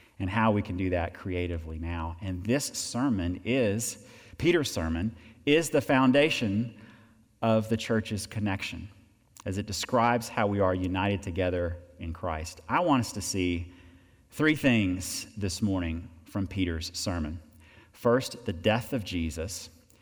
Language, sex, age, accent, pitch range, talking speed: English, male, 40-59, American, 90-115 Hz, 145 wpm